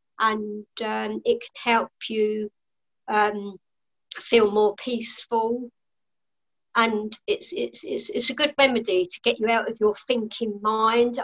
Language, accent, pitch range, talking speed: English, British, 215-250 Hz, 140 wpm